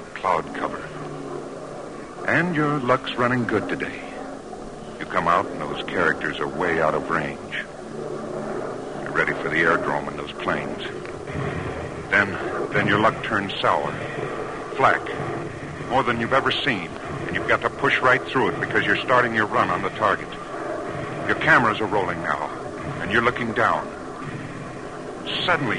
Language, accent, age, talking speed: English, American, 60-79, 155 wpm